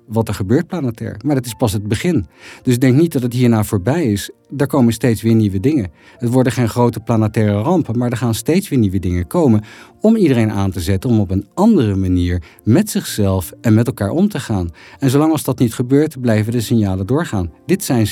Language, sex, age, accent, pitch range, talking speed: Dutch, male, 50-69, Dutch, 105-135 Hz, 225 wpm